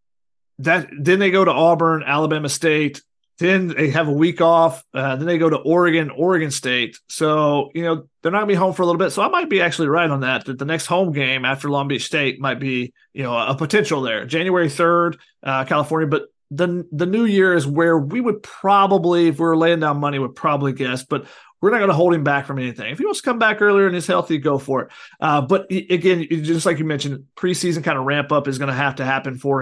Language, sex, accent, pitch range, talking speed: English, male, American, 140-180 Hz, 255 wpm